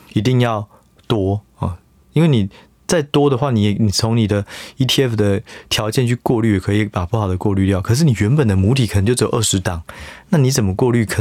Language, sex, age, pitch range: Chinese, male, 20-39, 95-120 Hz